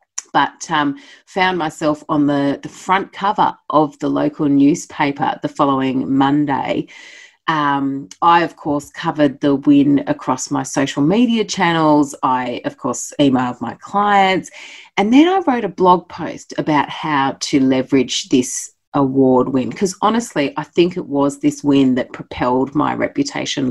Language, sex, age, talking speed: English, female, 30-49, 150 wpm